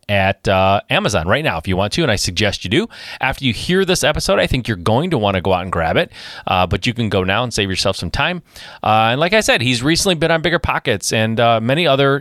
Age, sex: 30-49, male